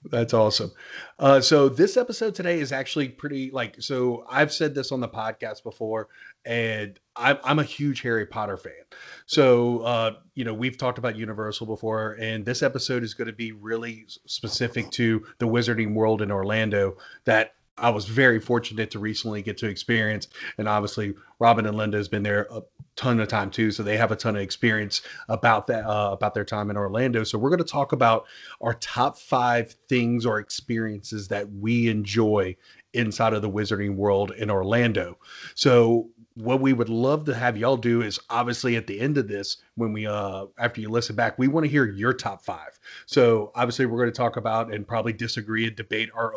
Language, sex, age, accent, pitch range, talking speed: English, male, 30-49, American, 105-120 Hz, 200 wpm